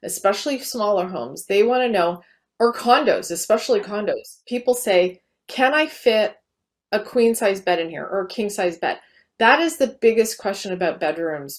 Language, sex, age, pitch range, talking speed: English, female, 30-49, 185-240 Hz, 175 wpm